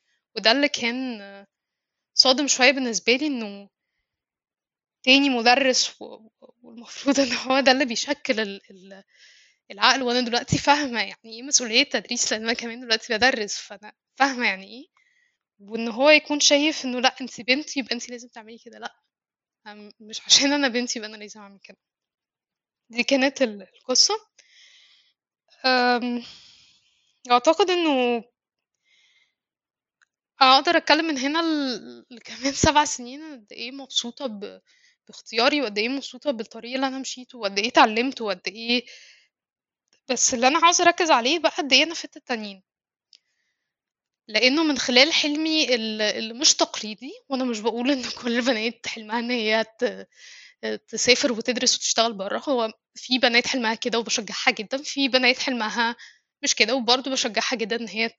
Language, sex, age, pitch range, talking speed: Arabic, female, 10-29, 230-280 Hz, 130 wpm